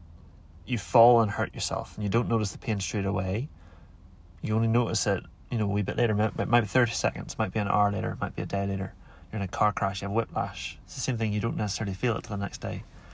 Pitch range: 90-115 Hz